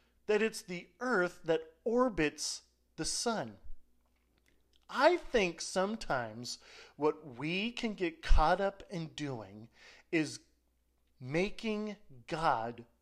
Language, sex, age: English, male, 40-59